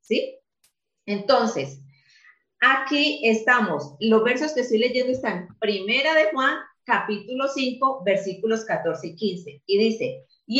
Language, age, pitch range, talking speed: English, 40-59, 190-265 Hz, 125 wpm